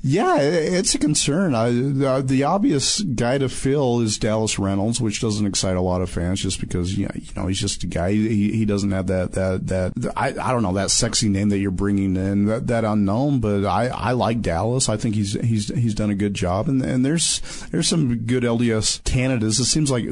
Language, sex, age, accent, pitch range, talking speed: English, male, 40-59, American, 105-135 Hz, 235 wpm